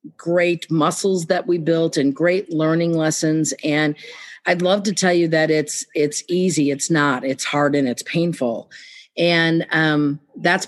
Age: 50-69